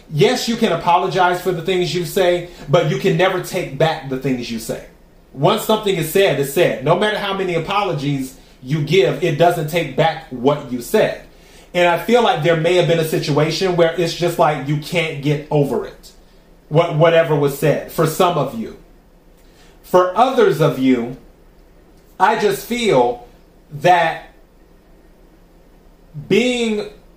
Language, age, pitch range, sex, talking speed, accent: English, 30-49, 155-185 Hz, male, 165 wpm, American